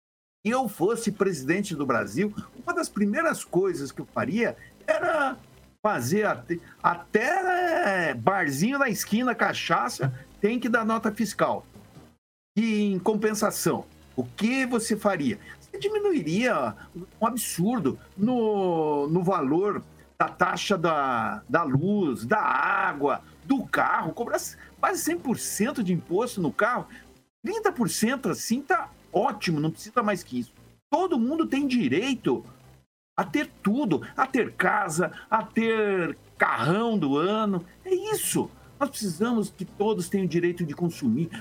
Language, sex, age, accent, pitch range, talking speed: Portuguese, male, 60-79, Brazilian, 175-245 Hz, 130 wpm